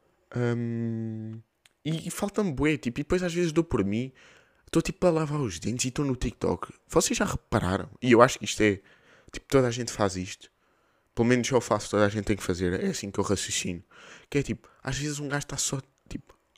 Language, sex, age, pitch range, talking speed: Portuguese, male, 20-39, 105-140 Hz, 230 wpm